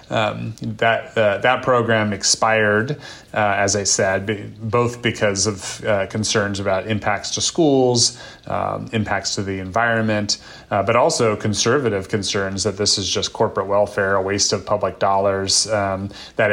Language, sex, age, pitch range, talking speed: English, male, 30-49, 100-110 Hz, 155 wpm